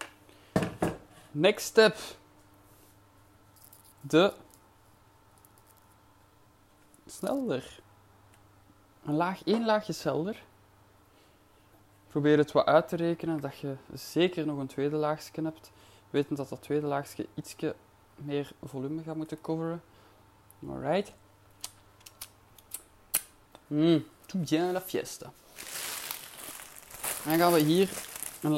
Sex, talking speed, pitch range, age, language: male, 95 wpm, 100-150 Hz, 20-39, Dutch